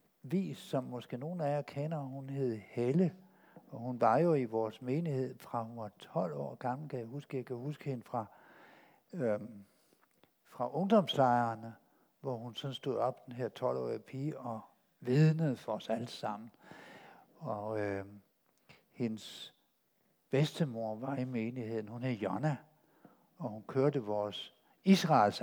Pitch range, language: 120-155 Hz, Danish